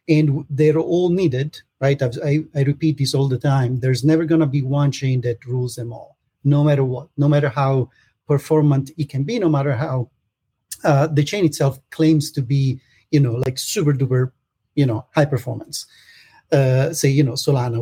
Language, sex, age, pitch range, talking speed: English, male, 40-59, 125-155 Hz, 190 wpm